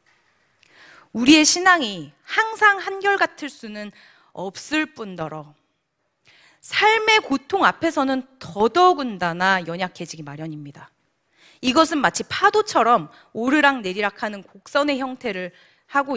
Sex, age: female, 30-49